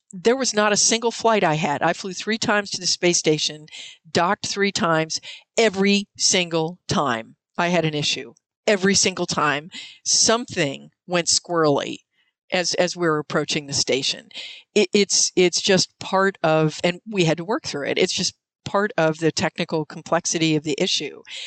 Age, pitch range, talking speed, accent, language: 50-69, 160-195 Hz, 170 wpm, American, English